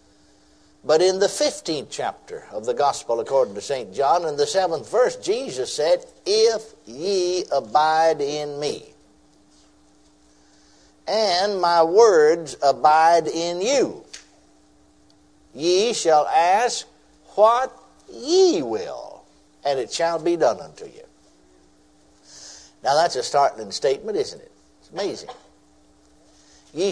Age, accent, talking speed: 60-79, American, 115 wpm